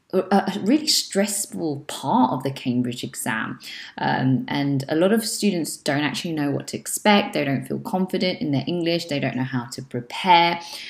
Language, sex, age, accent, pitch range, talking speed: English, female, 20-39, British, 140-210 Hz, 180 wpm